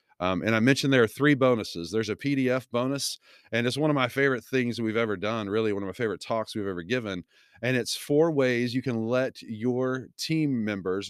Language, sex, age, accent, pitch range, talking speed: English, male, 40-59, American, 115-140 Hz, 220 wpm